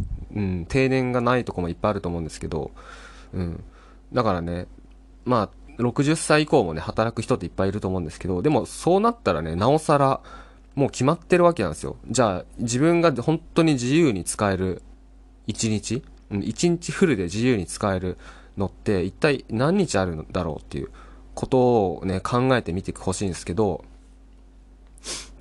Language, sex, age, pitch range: Japanese, male, 20-39, 90-140 Hz